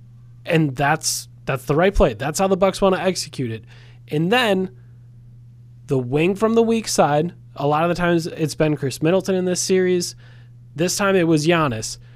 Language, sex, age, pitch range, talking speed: English, male, 20-39, 120-185 Hz, 190 wpm